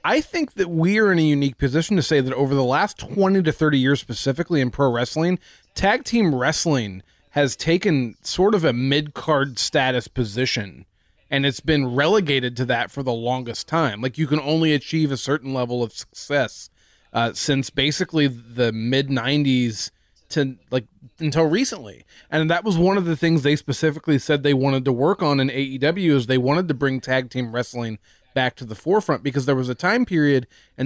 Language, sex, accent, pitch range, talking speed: English, male, American, 125-155 Hz, 195 wpm